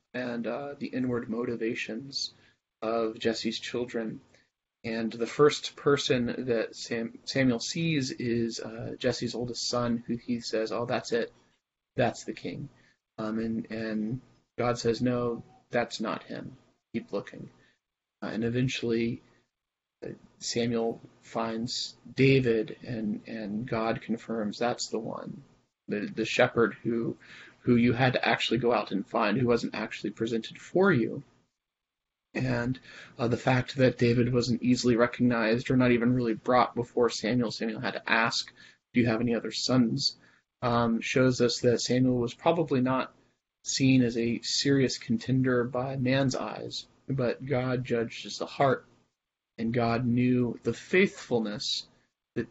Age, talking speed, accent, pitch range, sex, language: 30-49, 145 wpm, American, 115-125 Hz, male, English